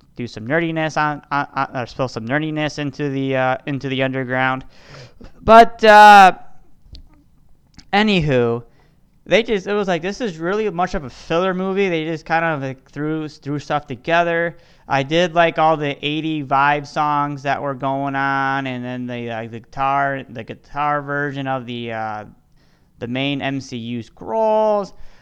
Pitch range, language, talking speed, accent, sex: 125-155 Hz, English, 165 wpm, American, male